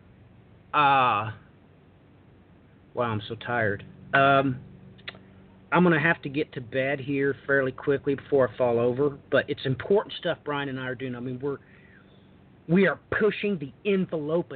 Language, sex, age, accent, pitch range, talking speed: English, male, 40-59, American, 130-155 Hz, 155 wpm